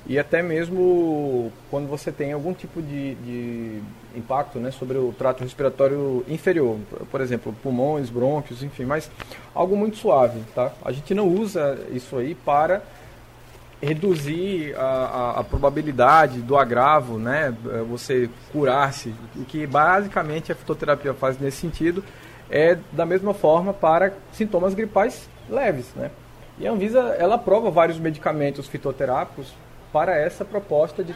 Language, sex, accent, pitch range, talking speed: Portuguese, male, Brazilian, 130-165 Hz, 140 wpm